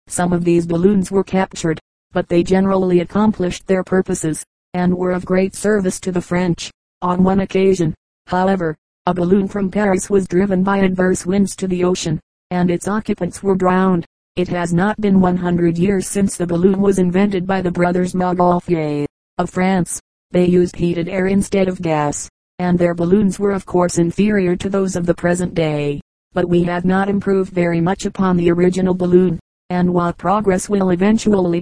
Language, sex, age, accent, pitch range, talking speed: English, female, 40-59, American, 175-195 Hz, 180 wpm